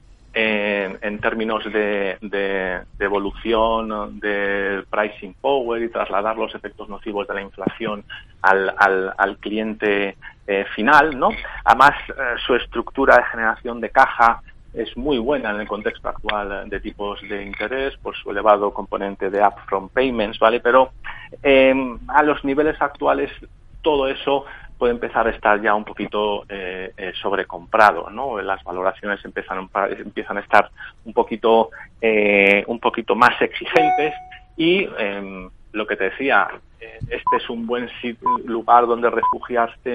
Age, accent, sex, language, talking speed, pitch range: 40-59, Spanish, male, Spanish, 150 wpm, 100-120 Hz